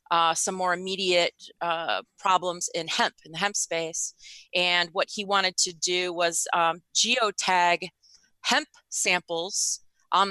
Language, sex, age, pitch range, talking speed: English, female, 30-49, 170-195 Hz, 140 wpm